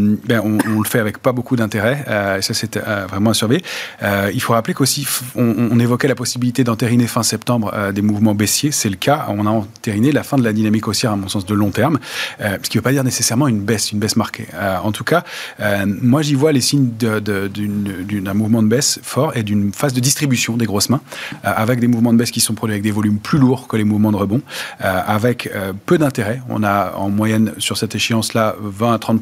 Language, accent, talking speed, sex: French, French, 260 wpm, male